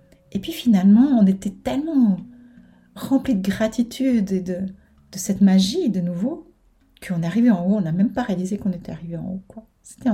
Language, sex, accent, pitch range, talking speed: French, female, French, 180-220 Hz, 190 wpm